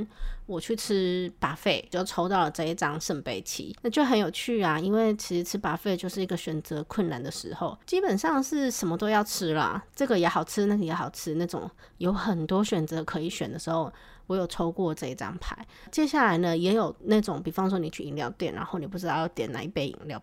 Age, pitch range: 30-49, 170-215 Hz